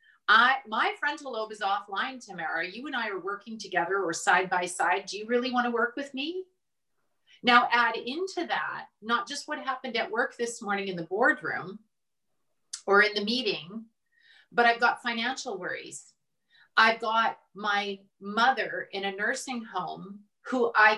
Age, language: 40-59, English